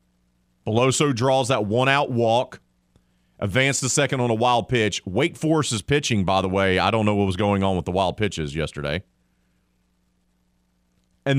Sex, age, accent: male, 40-59, American